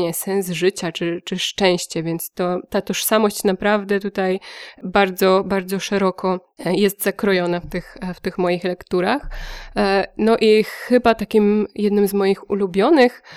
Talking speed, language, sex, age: 135 wpm, Polish, female, 20-39